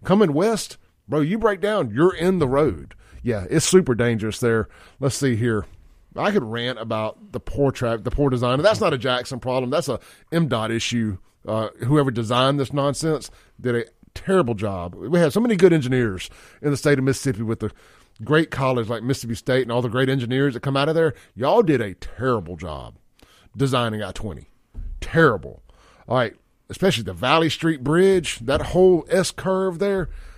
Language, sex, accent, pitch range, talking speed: English, male, American, 100-140 Hz, 185 wpm